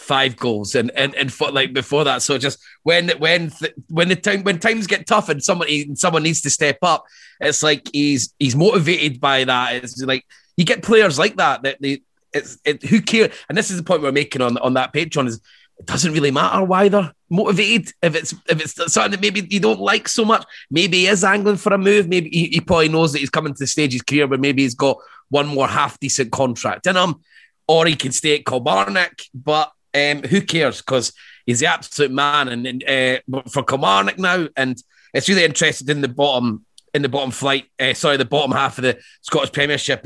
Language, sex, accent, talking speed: English, male, British, 225 wpm